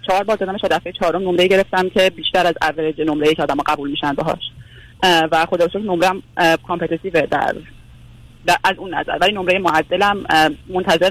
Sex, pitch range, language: female, 155-185 Hz, Persian